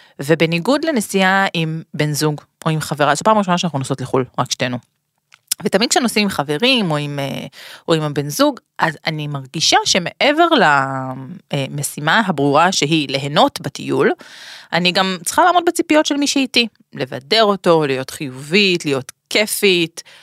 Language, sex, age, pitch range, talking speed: Hebrew, female, 30-49, 150-215 Hz, 150 wpm